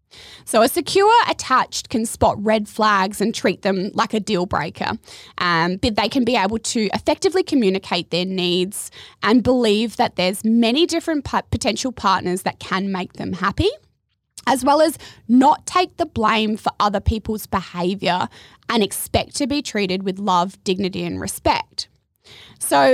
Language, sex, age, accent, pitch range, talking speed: English, female, 20-39, Australian, 200-275 Hz, 160 wpm